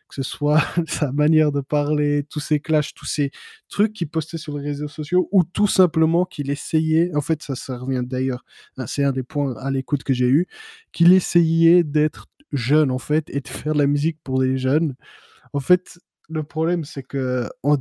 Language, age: French, 20-39